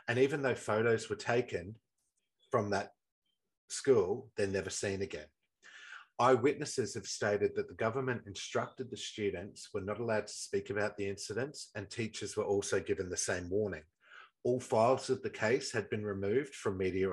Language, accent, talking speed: English, Australian, 170 wpm